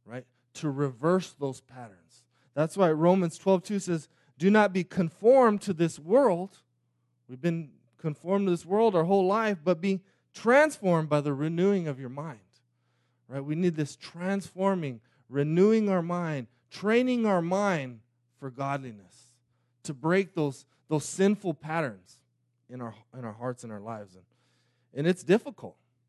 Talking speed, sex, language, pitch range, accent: 150 wpm, male, English, 125-180 Hz, American